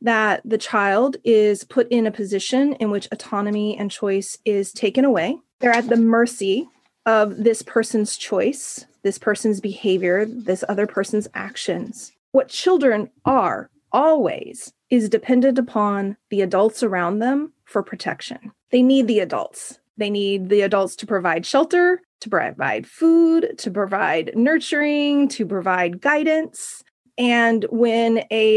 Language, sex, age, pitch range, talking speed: English, female, 30-49, 205-250 Hz, 140 wpm